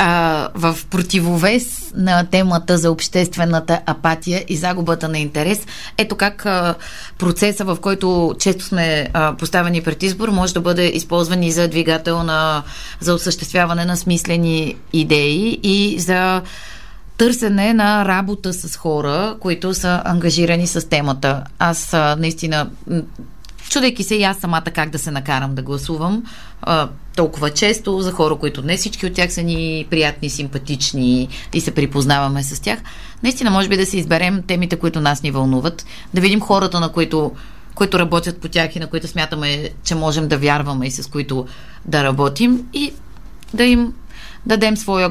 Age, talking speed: 20-39, 155 wpm